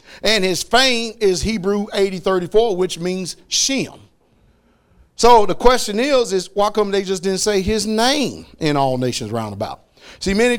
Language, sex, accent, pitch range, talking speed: English, male, American, 155-195 Hz, 160 wpm